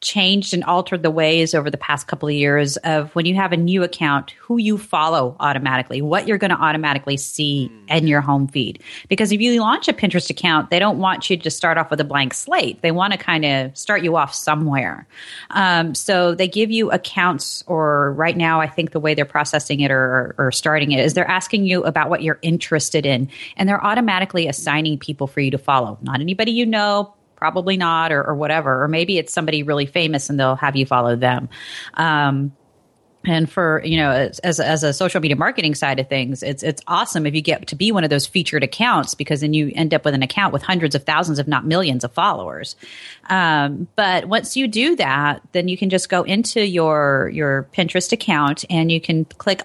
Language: English